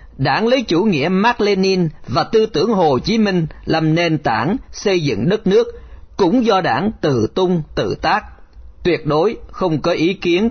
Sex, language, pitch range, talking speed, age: male, Vietnamese, 135-205 Hz, 185 wpm, 40-59